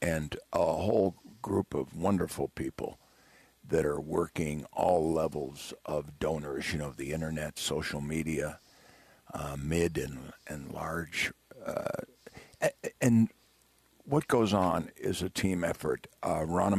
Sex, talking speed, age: male, 130 wpm, 60-79